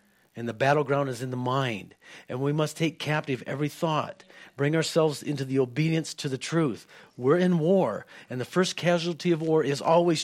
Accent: American